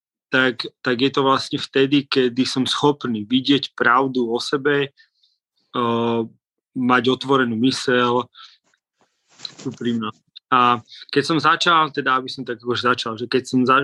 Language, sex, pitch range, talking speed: Slovak, male, 120-140 Hz, 140 wpm